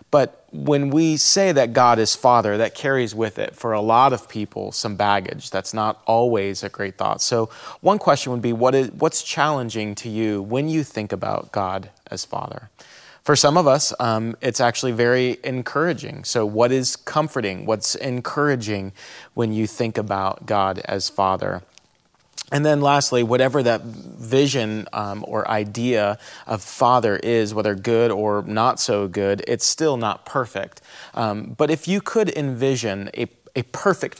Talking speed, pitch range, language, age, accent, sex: 165 wpm, 105-135 Hz, English, 30-49, American, male